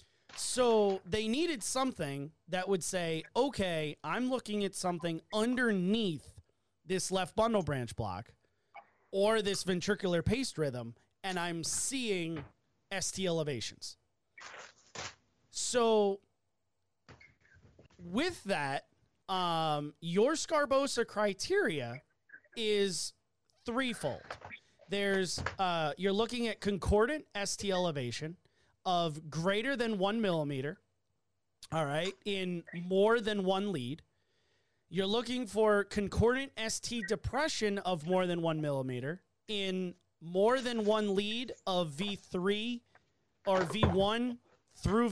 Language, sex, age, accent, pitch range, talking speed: English, male, 30-49, American, 160-220 Hz, 105 wpm